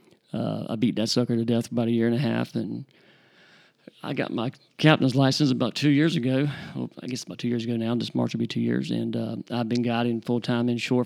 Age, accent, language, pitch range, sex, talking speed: 40-59, American, English, 115-125 Hz, male, 250 wpm